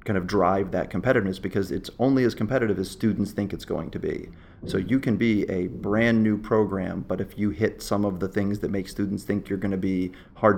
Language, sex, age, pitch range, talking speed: English, male, 30-49, 95-105 Hz, 240 wpm